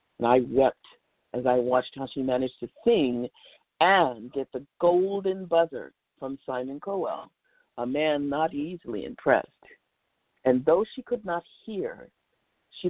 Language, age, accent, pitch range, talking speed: English, 50-69, American, 135-195 Hz, 145 wpm